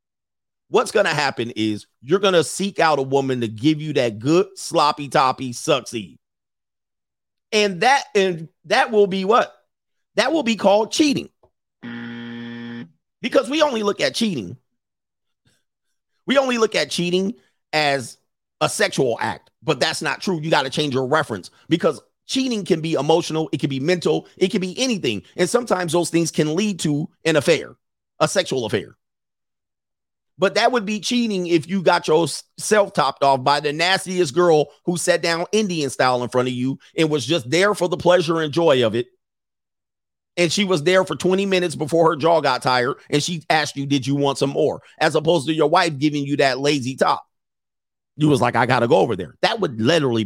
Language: English